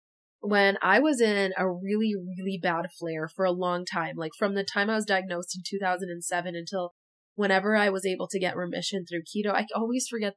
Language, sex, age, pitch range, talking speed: English, female, 20-39, 180-220 Hz, 205 wpm